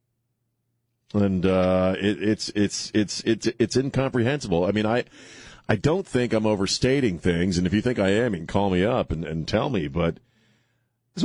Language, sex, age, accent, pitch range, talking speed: English, male, 40-59, American, 100-120 Hz, 185 wpm